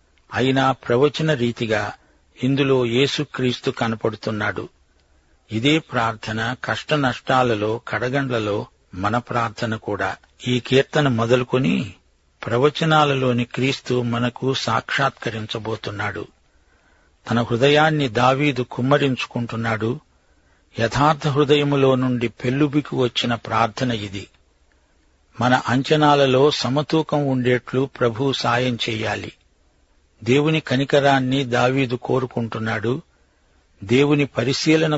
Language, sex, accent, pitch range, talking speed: Telugu, male, native, 110-135 Hz, 75 wpm